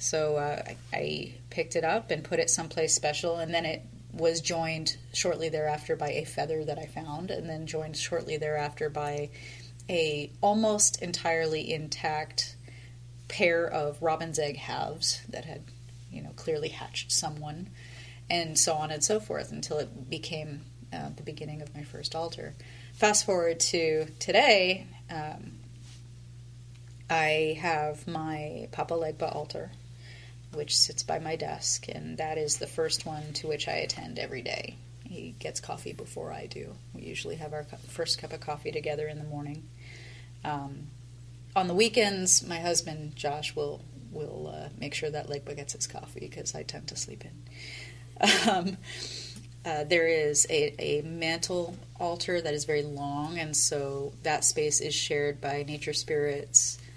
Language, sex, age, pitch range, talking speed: English, female, 30-49, 120-160 Hz, 160 wpm